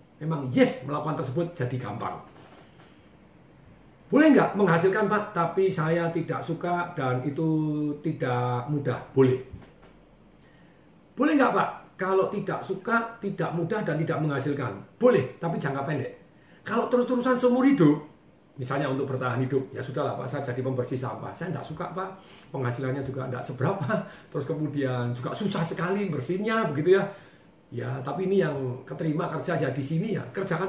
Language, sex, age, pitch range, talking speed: Indonesian, male, 40-59, 135-190 Hz, 150 wpm